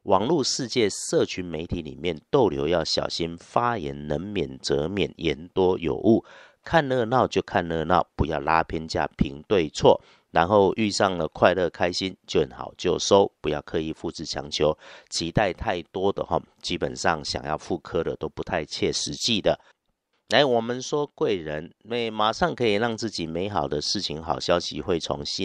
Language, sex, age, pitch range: Chinese, male, 50-69, 75-100 Hz